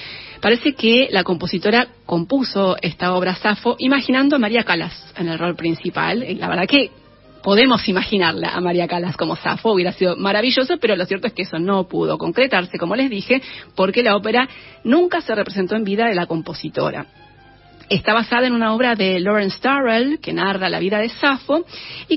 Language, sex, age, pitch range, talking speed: Spanish, female, 30-49, 190-255 Hz, 185 wpm